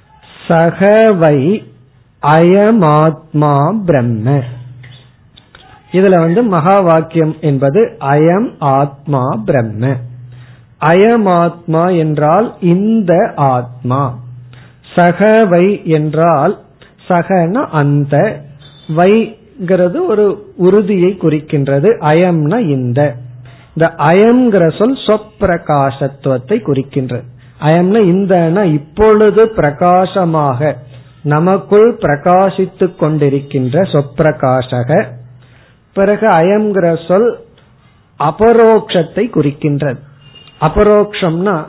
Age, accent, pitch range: 50-69, native, 140-190 Hz